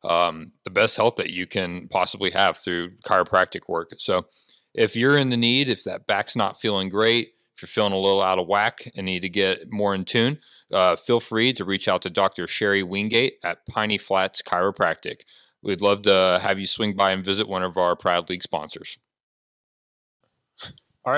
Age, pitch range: 30-49, 95-120 Hz